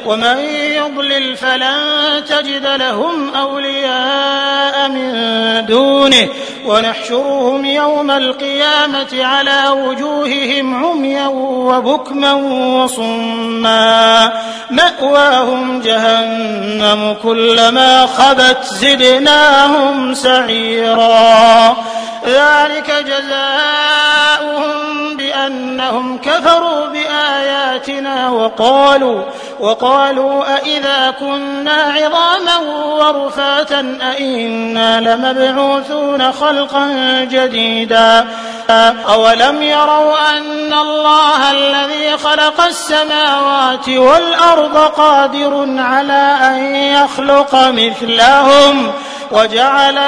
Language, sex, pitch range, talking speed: Arabic, male, 255-290 Hz, 60 wpm